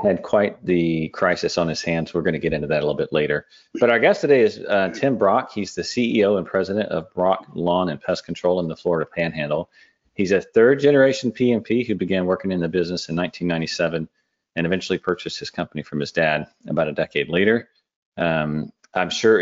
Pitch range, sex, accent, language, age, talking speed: 85-110 Hz, male, American, English, 40-59, 210 wpm